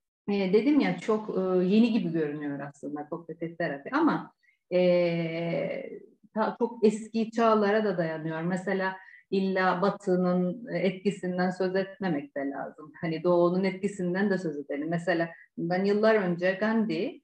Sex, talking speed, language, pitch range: female, 120 wpm, Turkish, 180-225 Hz